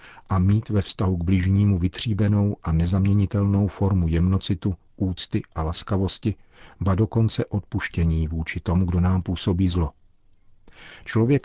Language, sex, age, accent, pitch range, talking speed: Czech, male, 50-69, native, 90-105 Hz, 125 wpm